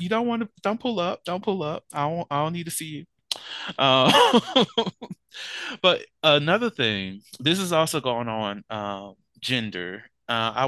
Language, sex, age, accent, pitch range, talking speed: English, male, 20-39, American, 110-140 Hz, 180 wpm